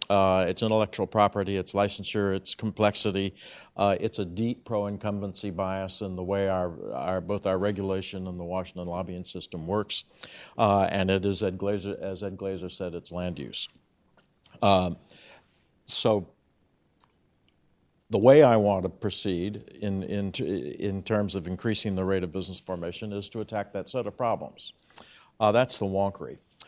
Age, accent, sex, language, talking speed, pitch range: 60-79, American, male, English, 160 wpm, 95-110 Hz